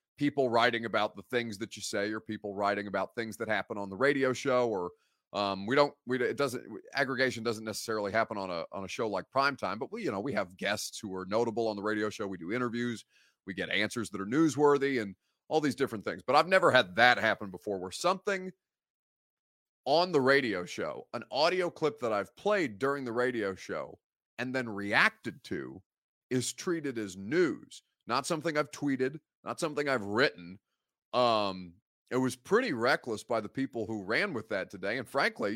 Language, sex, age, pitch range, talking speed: English, male, 30-49, 105-135 Hz, 200 wpm